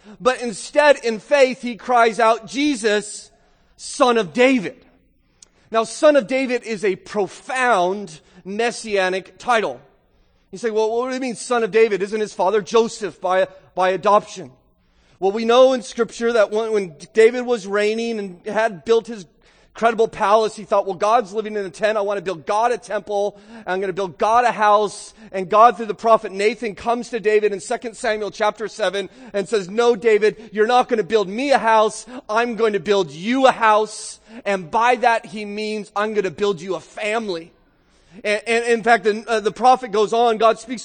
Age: 30-49